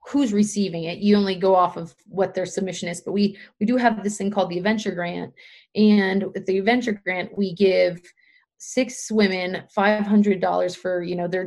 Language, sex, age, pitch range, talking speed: English, female, 30-49, 180-205 Hz, 195 wpm